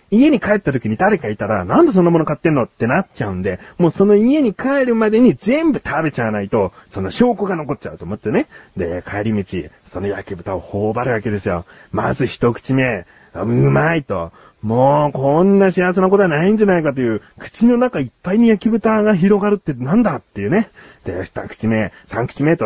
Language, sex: Japanese, male